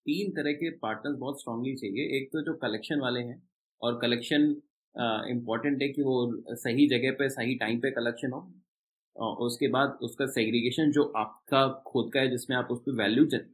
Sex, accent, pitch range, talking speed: male, native, 120-165 Hz, 185 wpm